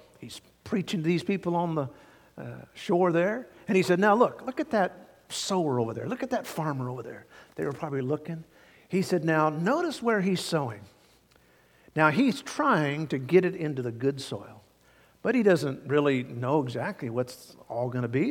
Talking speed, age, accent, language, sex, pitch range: 195 wpm, 50-69, American, English, male, 130-170 Hz